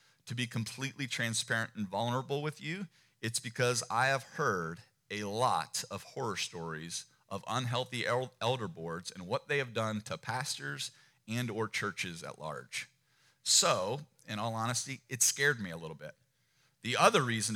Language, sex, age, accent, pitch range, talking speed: English, male, 40-59, American, 115-140 Hz, 160 wpm